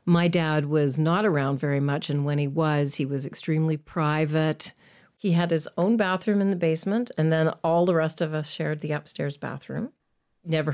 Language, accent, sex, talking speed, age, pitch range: English, American, female, 195 wpm, 40-59, 145-175 Hz